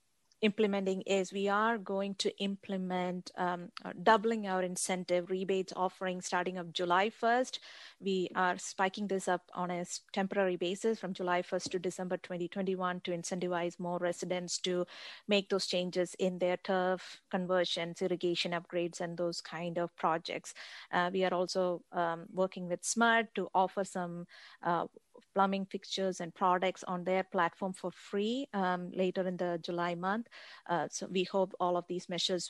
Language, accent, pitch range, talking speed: English, Indian, 175-195 Hz, 155 wpm